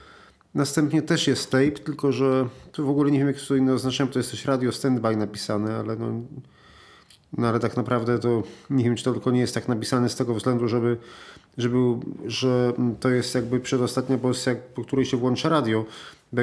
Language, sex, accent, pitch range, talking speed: Polish, male, native, 120-145 Hz, 195 wpm